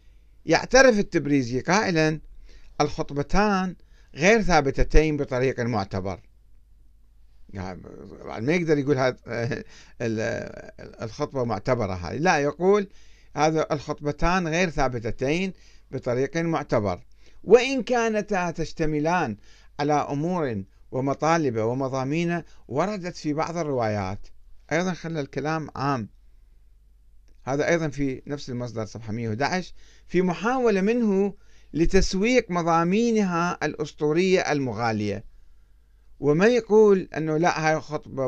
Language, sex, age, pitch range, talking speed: Arabic, male, 60-79, 115-175 Hz, 90 wpm